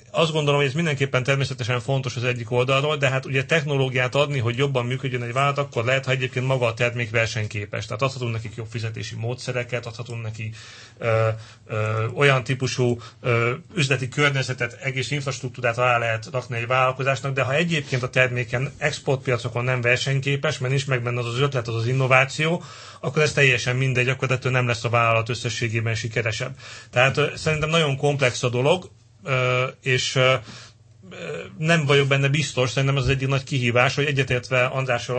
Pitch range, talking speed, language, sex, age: 120-135 Hz, 165 wpm, Hungarian, male, 40-59